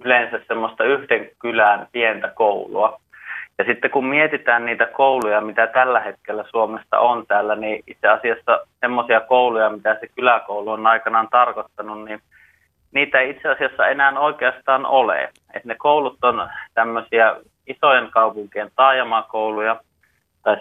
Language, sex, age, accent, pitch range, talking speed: Finnish, male, 30-49, native, 110-130 Hz, 130 wpm